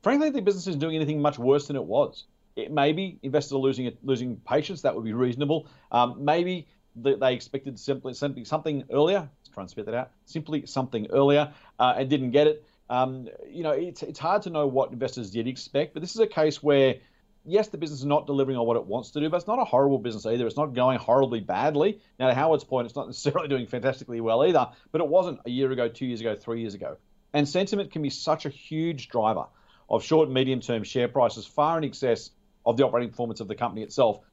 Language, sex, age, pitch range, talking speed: English, male, 40-59, 120-155 Hz, 235 wpm